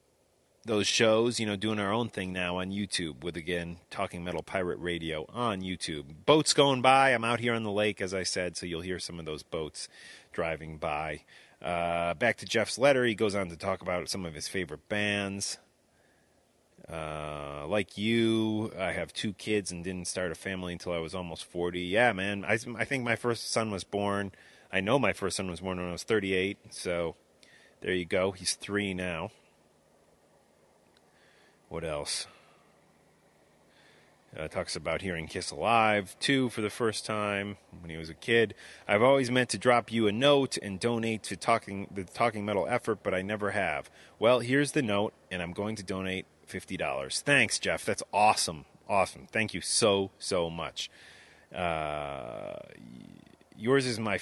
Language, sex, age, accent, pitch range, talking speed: English, male, 30-49, American, 85-110 Hz, 180 wpm